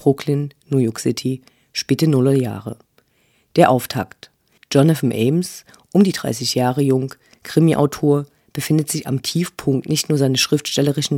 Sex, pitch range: female, 125-150 Hz